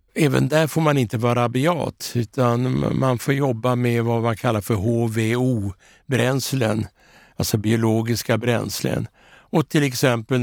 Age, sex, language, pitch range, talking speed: 60-79, male, Swedish, 110-130 Hz, 130 wpm